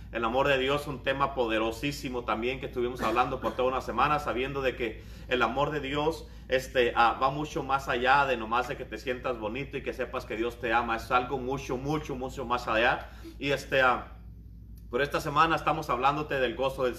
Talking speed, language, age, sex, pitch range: 215 wpm, Spanish, 30-49, male, 115-140 Hz